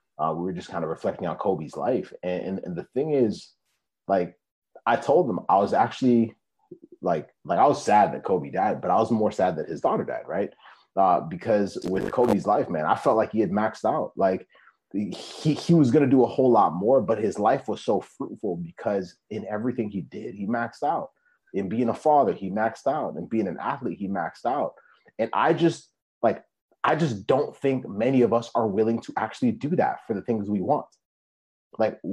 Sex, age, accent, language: male, 30-49, American, English